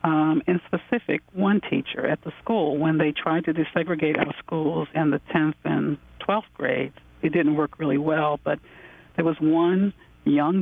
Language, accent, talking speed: English, American, 175 wpm